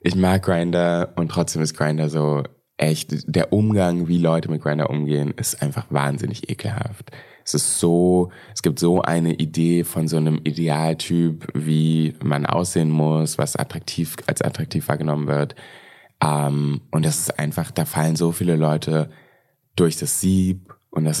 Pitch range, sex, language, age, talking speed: 80-95 Hz, male, German, 20-39, 160 wpm